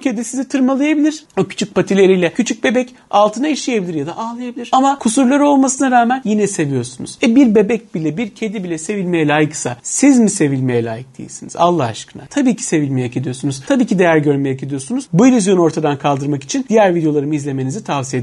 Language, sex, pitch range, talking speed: Turkish, male, 160-225 Hz, 175 wpm